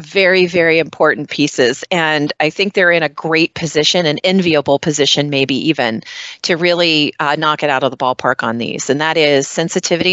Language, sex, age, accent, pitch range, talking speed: English, female, 40-59, American, 145-170 Hz, 190 wpm